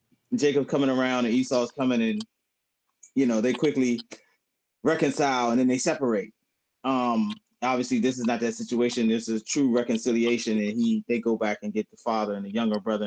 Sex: male